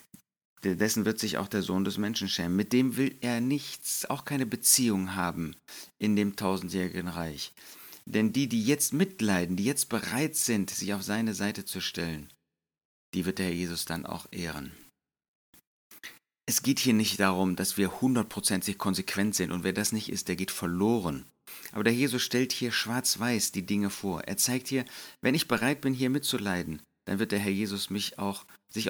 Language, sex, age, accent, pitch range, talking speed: German, male, 40-59, German, 90-115 Hz, 185 wpm